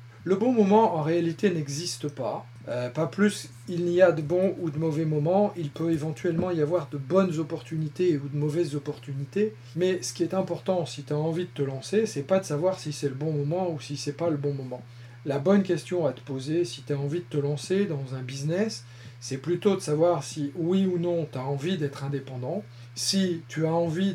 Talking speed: 230 wpm